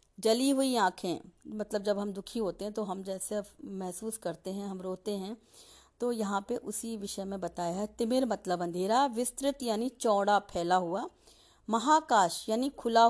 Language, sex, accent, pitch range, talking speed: Hindi, female, native, 200-270 Hz, 170 wpm